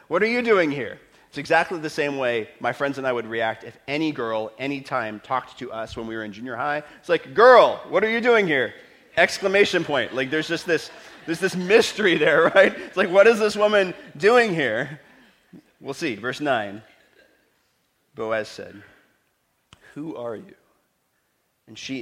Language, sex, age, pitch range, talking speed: English, male, 40-59, 105-140 Hz, 185 wpm